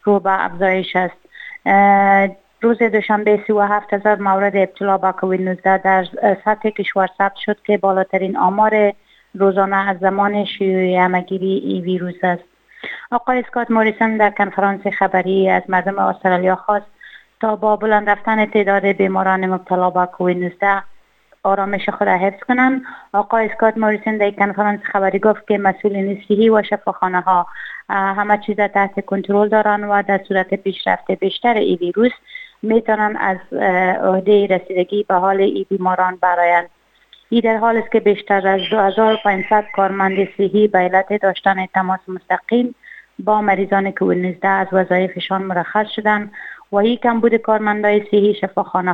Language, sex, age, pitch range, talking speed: Persian, female, 30-49, 190-210 Hz, 135 wpm